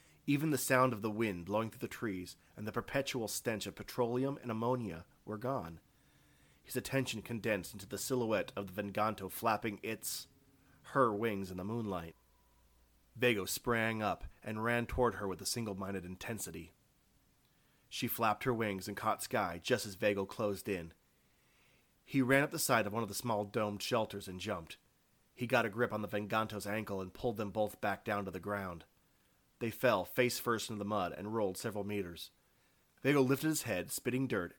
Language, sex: English, male